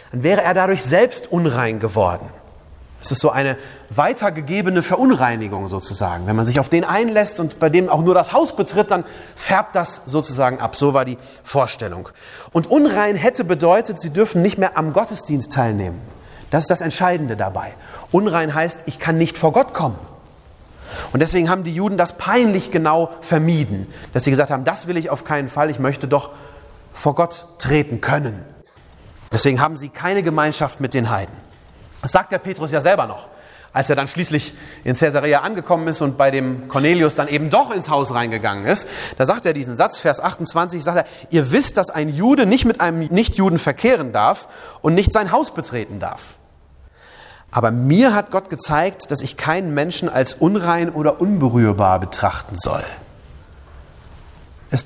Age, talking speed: 30-49, 180 wpm